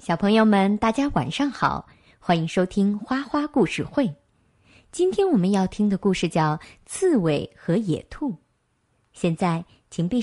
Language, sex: Chinese, male